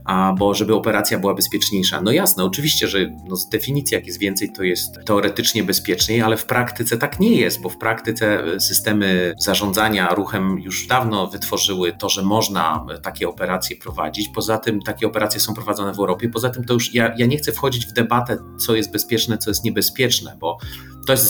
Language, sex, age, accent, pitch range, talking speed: Polish, male, 40-59, native, 95-120 Hz, 190 wpm